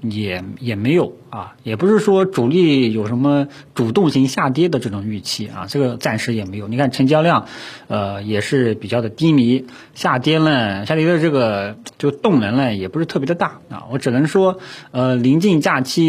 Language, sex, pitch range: Chinese, male, 115-150 Hz